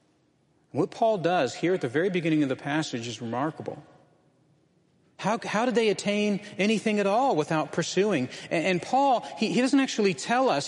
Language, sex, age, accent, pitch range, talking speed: English, male, 40-59, American, 145-200 Hz, 180 wpm